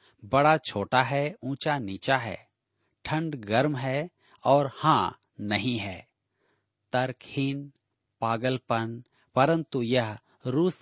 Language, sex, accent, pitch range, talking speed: Hindi, male, native, 110-150 Hz, 100 wpm